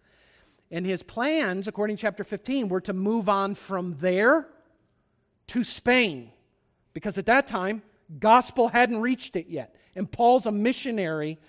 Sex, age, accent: male, 40-59, American